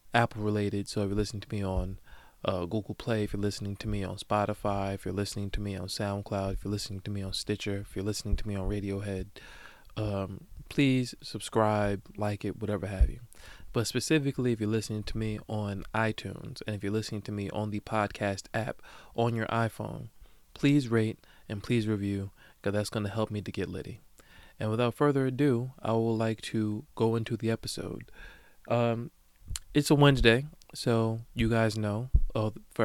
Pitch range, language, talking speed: 100-115 Hz, English, 190 wpm